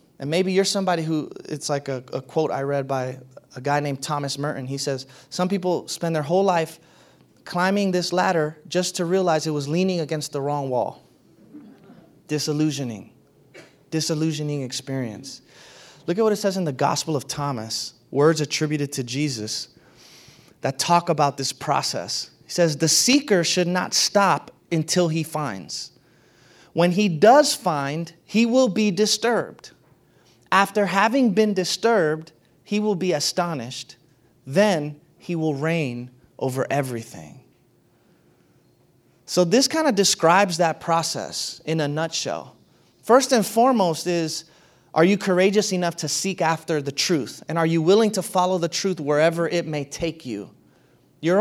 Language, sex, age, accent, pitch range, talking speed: English, male, 30-49, American, 145-195 Hz, 150 wpm